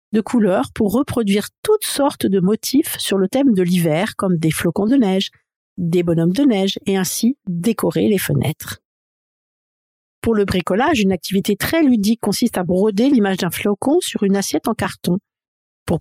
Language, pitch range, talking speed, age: French, 175-230 Hz, 170 wpm, 50-69